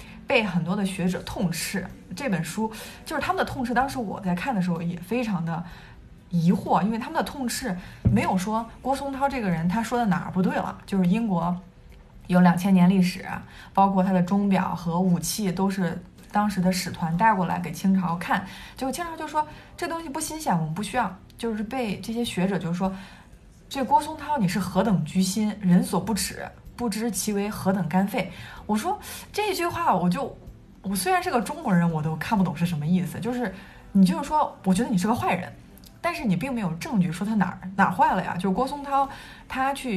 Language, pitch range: Chinese, 180-225 Hz